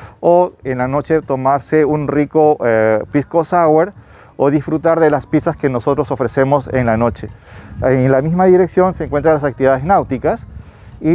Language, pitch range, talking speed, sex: Spanish, 130-155 Hz, 165 wpm, male